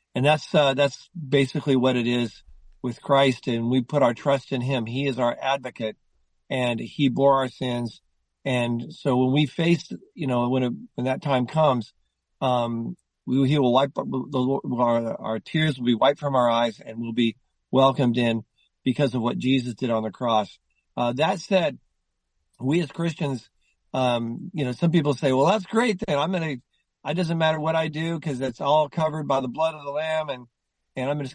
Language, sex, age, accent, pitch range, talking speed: English, male, 50-69, American, 120-145 Hz, 205 wpm